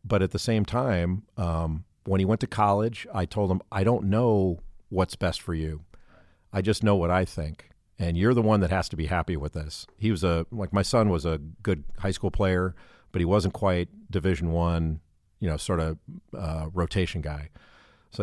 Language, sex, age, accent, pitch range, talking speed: English, male, 50-69, American, 85-105 Hz, 210 wpm